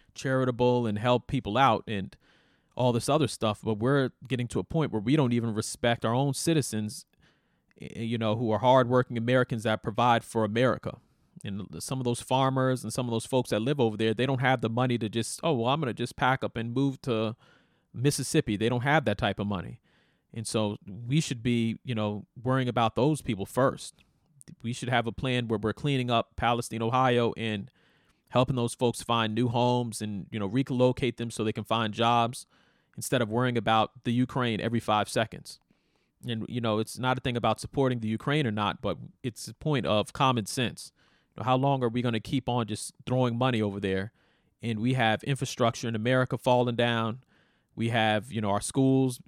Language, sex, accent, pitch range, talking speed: English, male, American, 110-130 Hz, 205 wpm